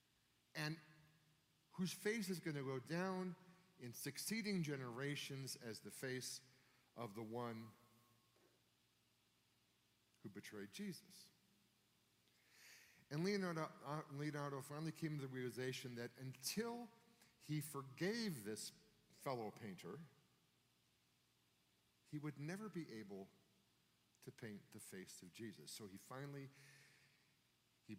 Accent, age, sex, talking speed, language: American, 50-69, male, 105 wpm, English